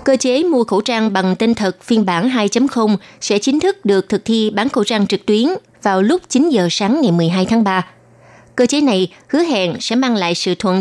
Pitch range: 185-240 Hz